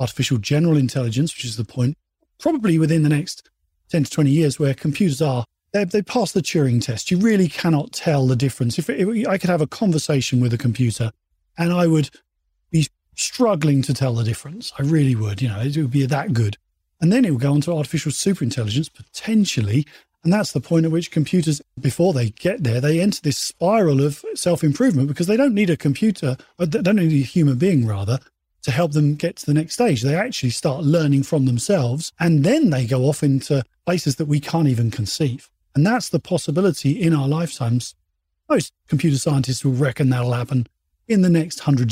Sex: male